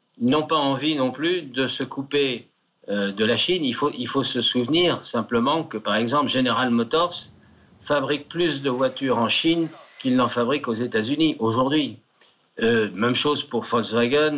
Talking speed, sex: 170 wpm, male